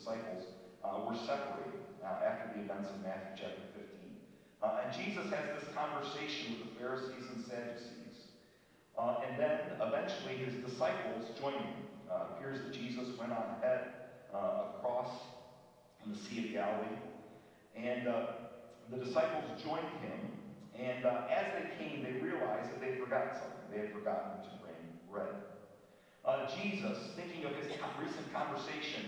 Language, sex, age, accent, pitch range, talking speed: English, male, 40-59, American, 115-145 Hz, 155 wpm